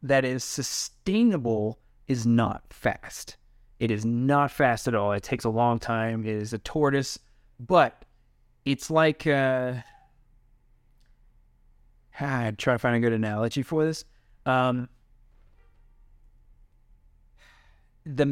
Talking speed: 120 wpm